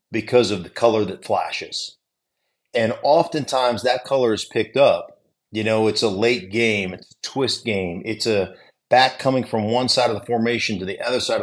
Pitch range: 100-120 Hz